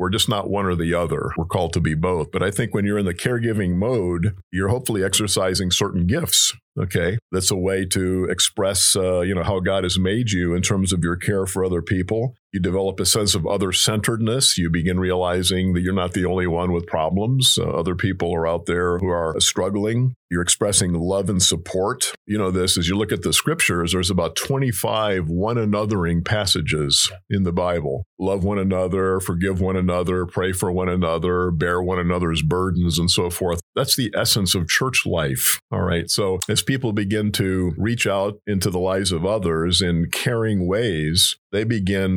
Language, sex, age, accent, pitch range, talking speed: English, male, 50-69, American, 90-105 Hz, 195 wpm